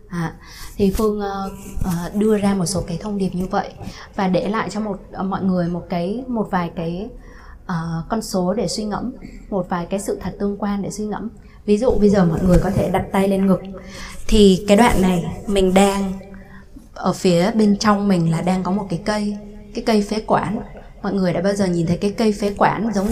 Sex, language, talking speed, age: female, Vietnamese, 230 wpm, 20-39